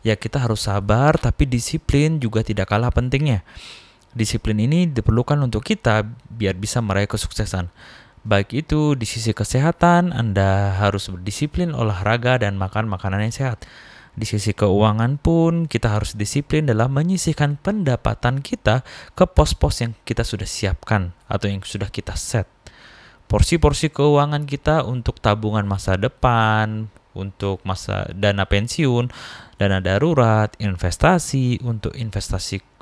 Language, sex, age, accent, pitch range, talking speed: Indonesian, male, 20-39, native, 105-135 Hz, 130 wpm